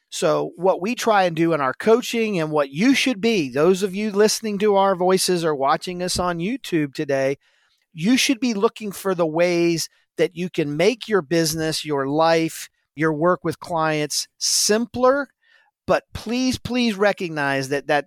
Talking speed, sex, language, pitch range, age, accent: 175 wpm, male, English, 165-235 Hz, 40-59, American